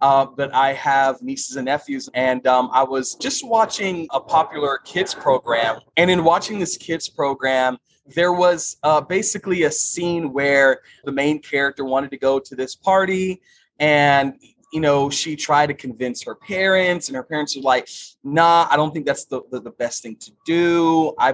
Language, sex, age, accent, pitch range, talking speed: English, male, 20-39, American, 135-180 Hz, 185 wpm